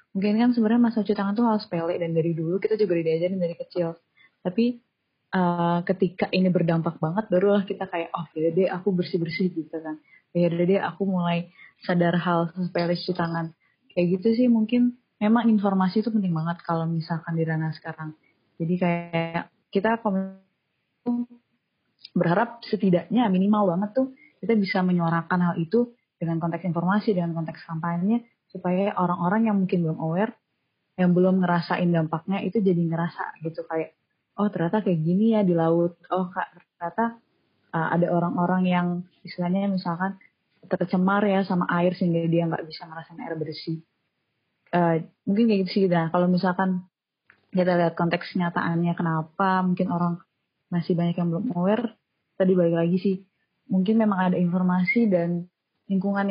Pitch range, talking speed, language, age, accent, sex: 170-200 Hz, 160 wpm, Indonesian, 20-39, native, female